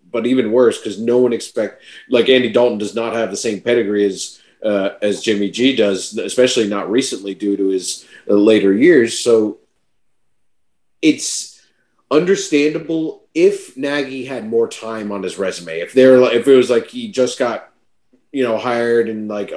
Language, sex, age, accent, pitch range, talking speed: English, male, 30-49, American, 105-140 Hz, 175 wpm